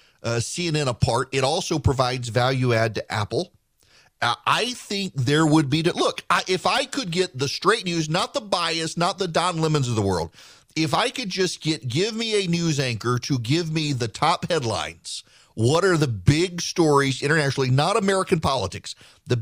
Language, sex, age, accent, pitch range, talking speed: English, male, 40-59, American, 125-165 Hz, 190 wpm